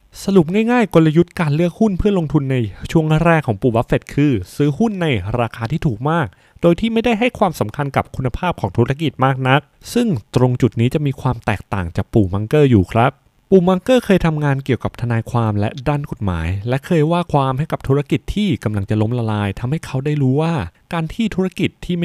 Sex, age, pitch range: male, 20-39, 115-160 Hz